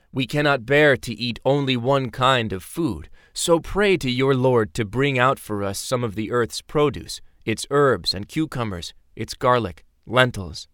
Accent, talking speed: American, 180 wpm